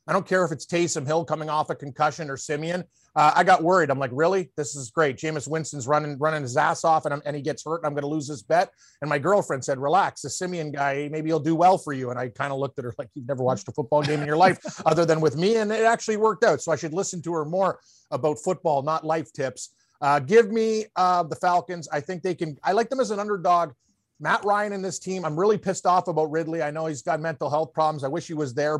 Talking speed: 280 wpm